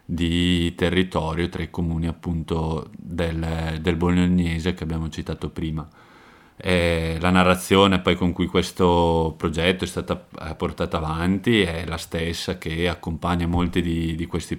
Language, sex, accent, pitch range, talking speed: Italian, male, native, 80-90 Hz, 140 wpm